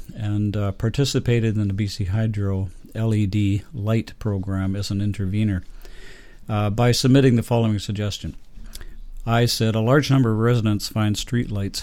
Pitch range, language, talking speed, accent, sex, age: 100-115 Hz, English, 145 wpm, American, male, 50-69